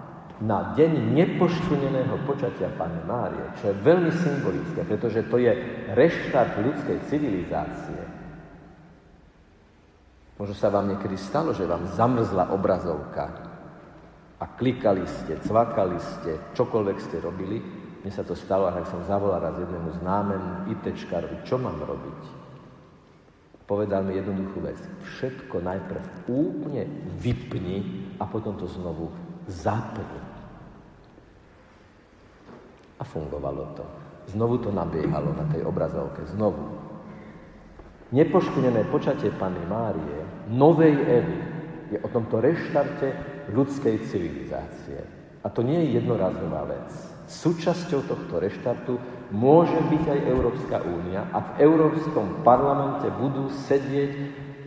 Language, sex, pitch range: Slovak, male, 100-155 Hz